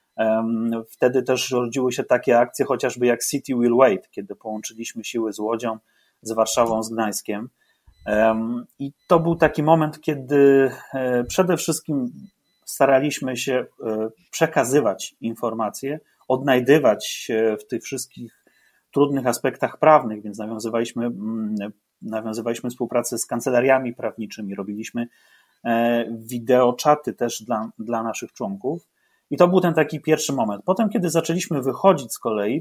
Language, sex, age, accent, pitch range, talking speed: Polish, male, 30-49, native, 115-140 Hz, 125 wpm